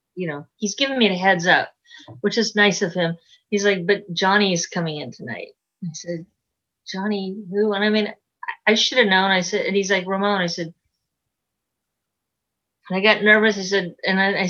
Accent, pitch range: American, 175-215 Hz